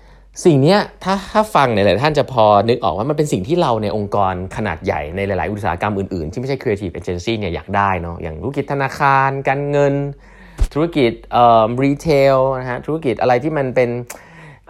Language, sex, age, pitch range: Thai, male, 20-39, 100-140 Hz